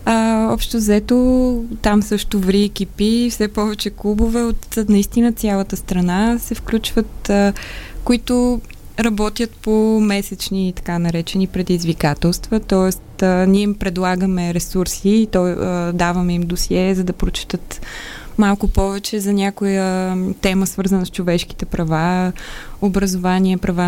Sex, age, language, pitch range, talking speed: female, 20-39, Bulgarian, 185-215 Hz, 125 wpm